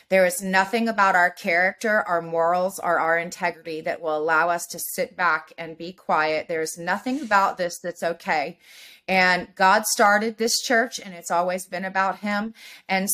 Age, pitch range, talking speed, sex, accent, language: 30-49, 170-205 Hz, 180 wpm, female, American, English